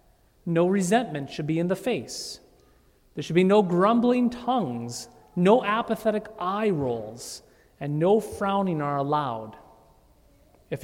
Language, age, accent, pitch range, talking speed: English, 40-59, American, 165-220 Hz, 125 wpm